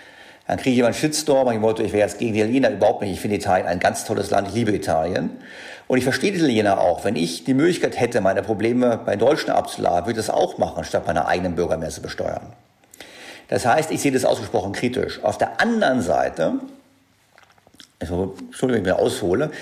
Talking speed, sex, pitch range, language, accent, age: 215 wpm, male, 110-150 Hz, German, German, 50-69